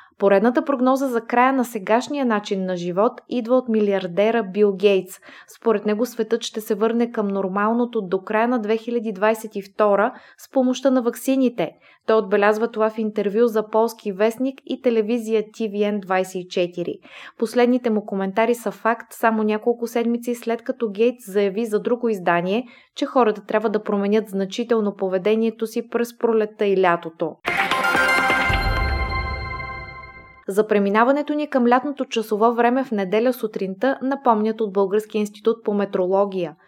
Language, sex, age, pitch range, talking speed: Bulgarian, female, 20-39, 200-240 Hz, 135 wpm